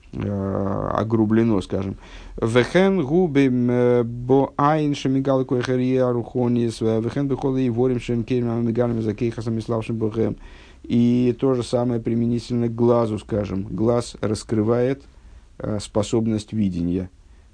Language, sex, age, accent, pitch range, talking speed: Russian, male, 50-69, native, 105-125 Hz, 55 wpm